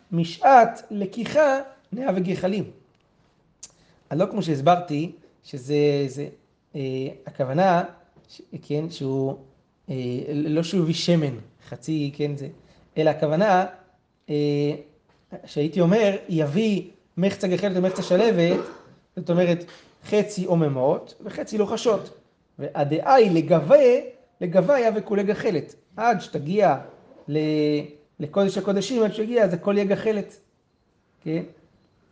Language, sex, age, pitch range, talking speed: Hebrew, male, 30-49, 155-200 Hz, 110 wpm